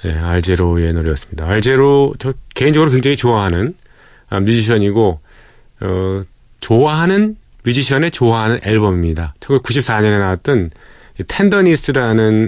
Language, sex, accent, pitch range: Korean, male, native, 95-140 Hz